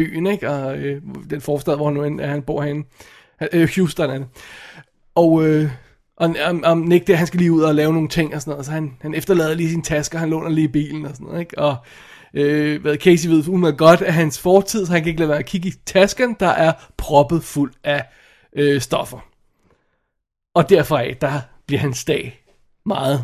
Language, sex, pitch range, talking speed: Danish, male, 155-185 Hz, 210 wpm